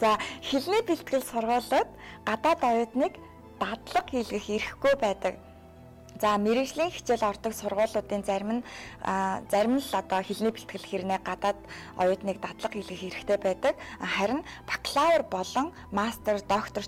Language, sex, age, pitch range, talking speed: English, female, 20-39, 195-245 Hz, 125 wpm